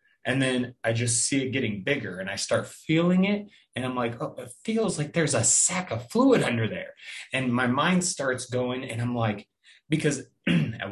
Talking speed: 205 wpm